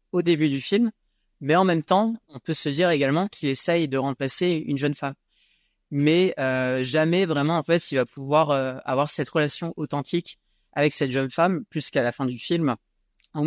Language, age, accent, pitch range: French, 30-49, French, 130-155 Hz